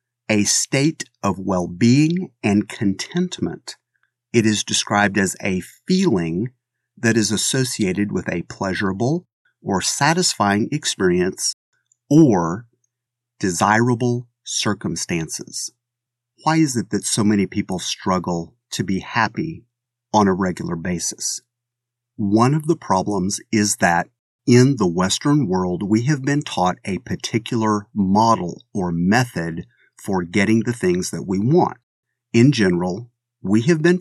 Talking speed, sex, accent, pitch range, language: 125 wpm, male, American, 100-125 Hz, English